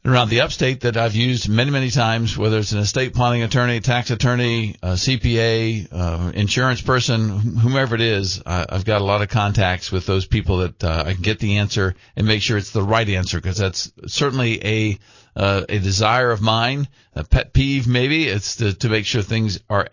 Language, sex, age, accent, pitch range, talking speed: English, male, 50-69, American, 105-130 Hz, 200 wpm